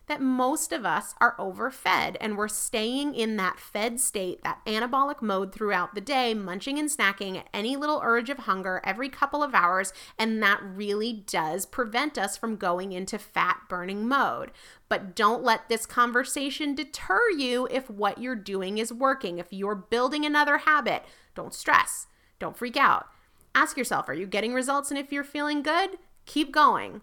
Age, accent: 30-49, American